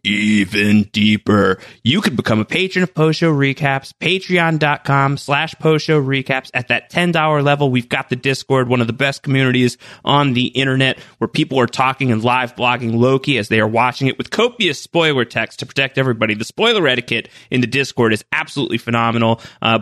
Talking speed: 180 wpm